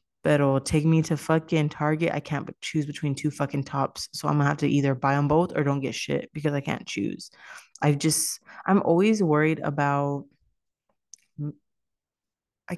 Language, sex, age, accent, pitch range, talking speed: English, female, 30-49, American, 145-175 Hz, 175 wpm